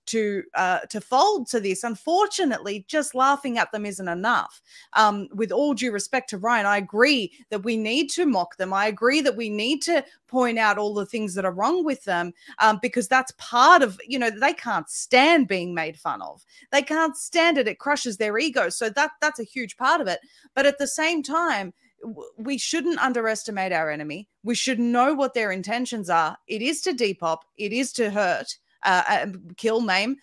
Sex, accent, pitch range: female, Australian, 205-270 Hz